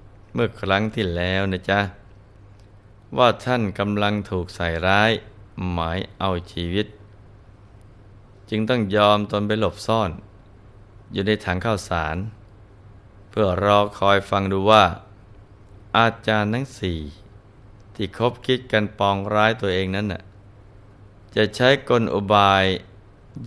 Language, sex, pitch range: Thai, male, 100-110 Hz